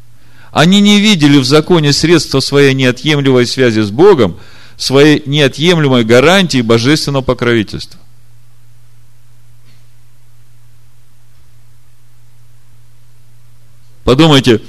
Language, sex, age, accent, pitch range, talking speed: Russian, male, 40-59, native, 115-155 Hz, 70 wpm